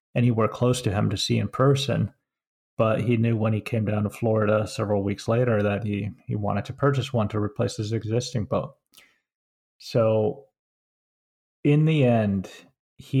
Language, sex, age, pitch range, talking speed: English, male, 30-49, 105-125 Hz, 170 wpm